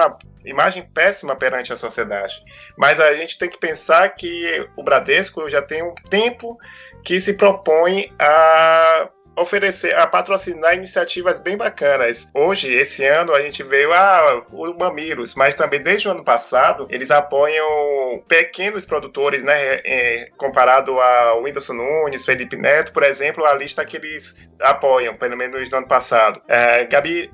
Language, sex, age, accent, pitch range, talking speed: Portuguese, male, 20-39, Brazilian, 140-195 Hz, 155 wpm